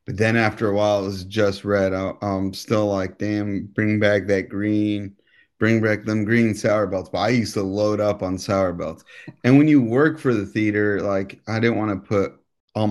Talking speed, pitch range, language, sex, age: 215 wpm, 95-115 Hz, English, male, 30-49